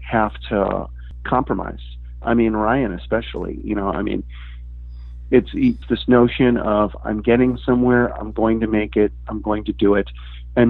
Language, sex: English, male